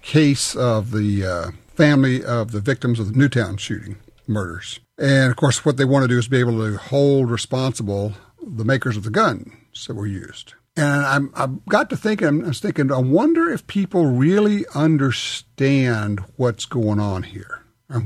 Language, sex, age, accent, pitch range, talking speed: English, male, 60-79, American, 115-145 Hz, 180 wpm